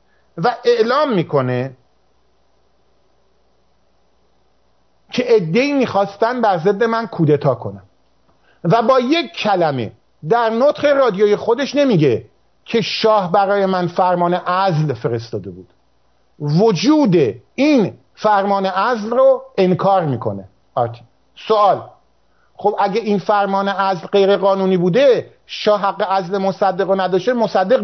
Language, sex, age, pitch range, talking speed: English, male, 50-69, 170-235 Hz, 110 wpm